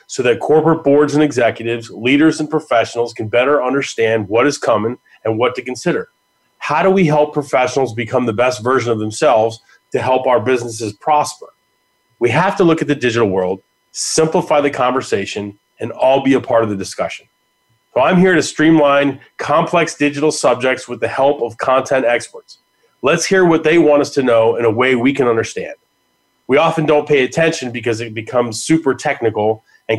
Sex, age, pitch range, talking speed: male, 30-49, 115-150 Hz, 185 wpm